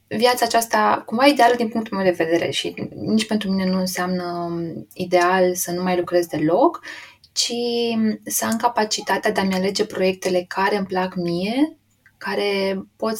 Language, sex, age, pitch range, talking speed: Romanian, female, 20-39, 185-225 Hz, 160 wpm